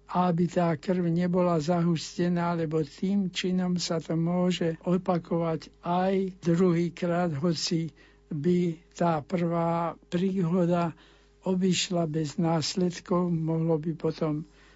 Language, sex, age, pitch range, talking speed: Slovak, male, 60-79, 160-180 Hz, 105 wpm